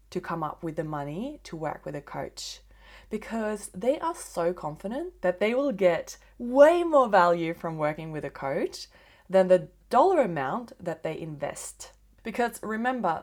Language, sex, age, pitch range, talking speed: English, female, 20-39, 165-250 Hz, 170 wpm